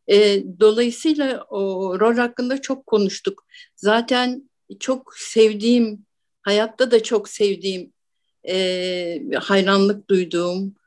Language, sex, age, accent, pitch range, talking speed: Turkish, female, 60-79, native, 180-235 Hz, 85 wpm